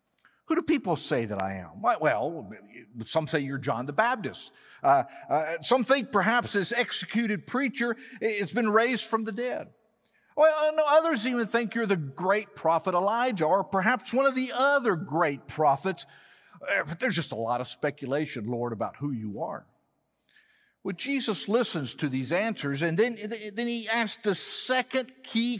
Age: 50-69